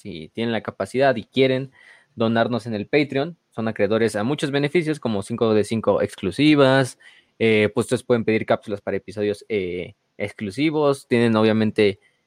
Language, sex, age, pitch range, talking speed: Spanish, male, 20-39, 105-140 Hz, 155 wpm